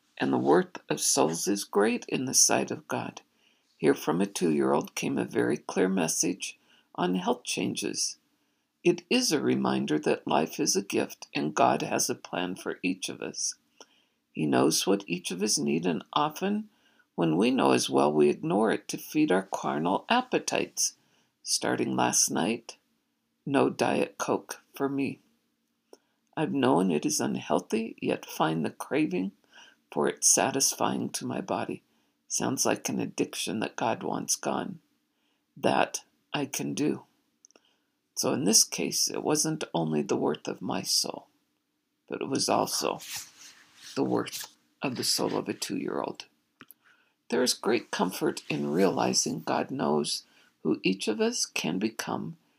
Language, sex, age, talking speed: English, female, 60-79, 155 wpm